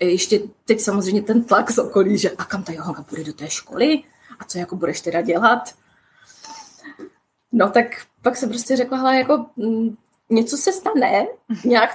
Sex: female